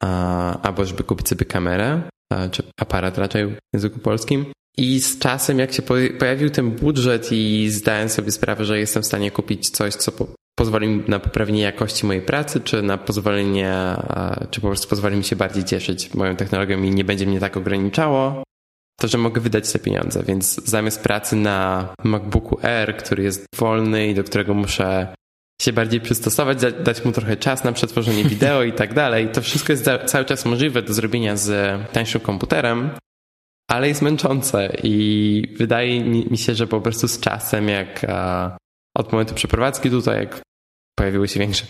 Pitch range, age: 100-120 Hz, 20-39